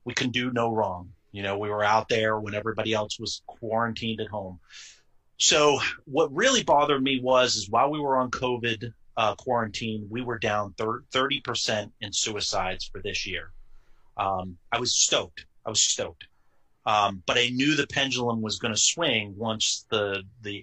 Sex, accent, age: male, American, 30-49